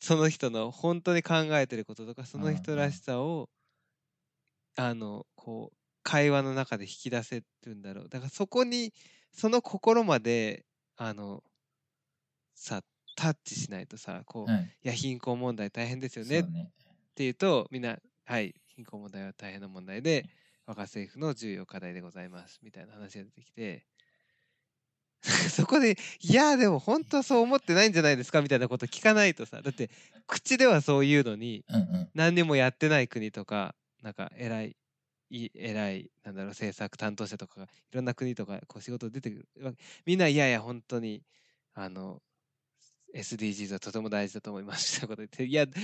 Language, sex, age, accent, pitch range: Japanese, male, 20-39, native, 110-170 Hz